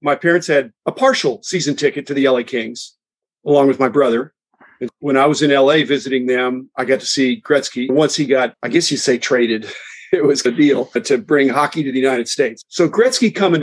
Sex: male